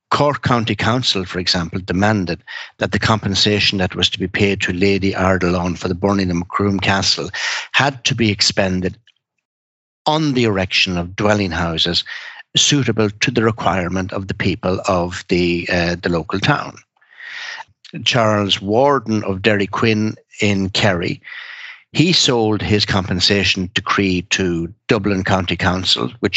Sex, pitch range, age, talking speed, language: male, 95-115 Hz, 60-79, 145 wpm, English